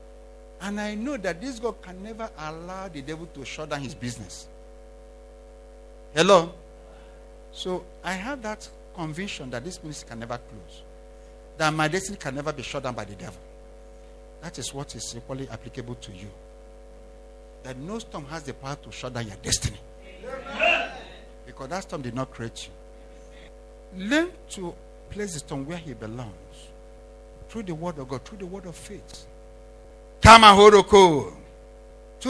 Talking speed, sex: 155 wpm, male